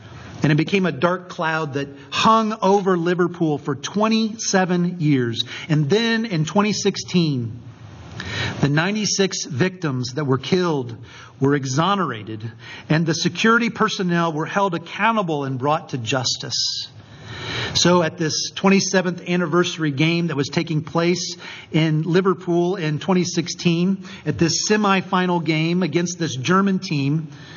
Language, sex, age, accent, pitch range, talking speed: English, male, 40-59, American, 135-185 Hz, 125 wpm